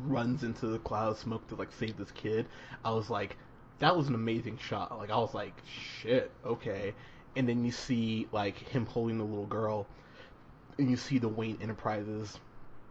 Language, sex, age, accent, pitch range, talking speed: English, male, 20-39, American, 110-130 Hz, 190 wpm